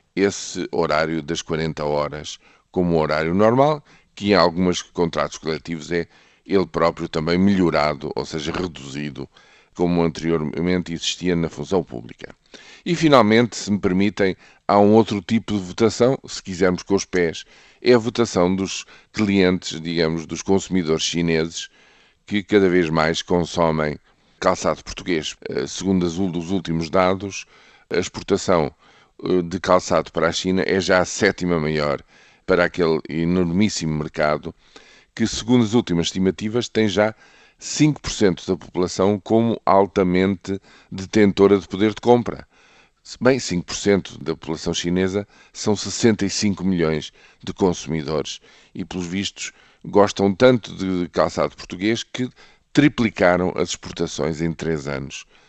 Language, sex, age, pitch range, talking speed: Portuguese, male, 50-69, 80-100 Hz, 130 wpm